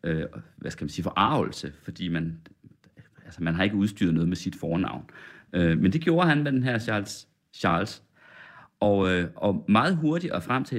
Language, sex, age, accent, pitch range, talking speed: Danish, male, 30-49, native, 95-130 Hz, 185 wpm